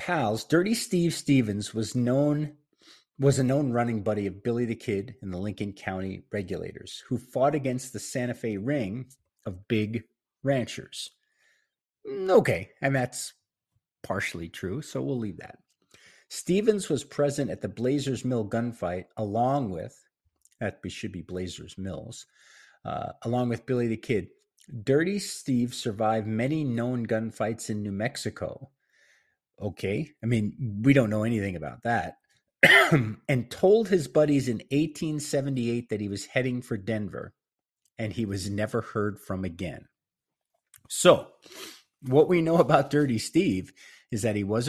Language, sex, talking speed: English, male, 145 wpm